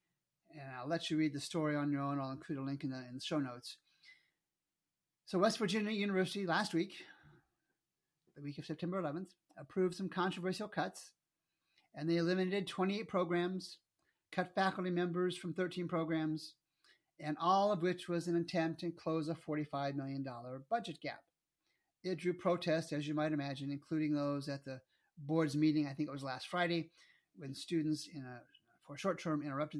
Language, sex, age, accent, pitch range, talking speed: English, male, 40-59, American, 140-180 Hz, 175 wpm